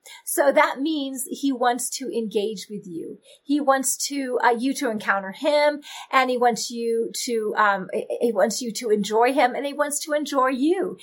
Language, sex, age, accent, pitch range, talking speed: English, female, 40-59, American, 235-295 Hz, 190 wpm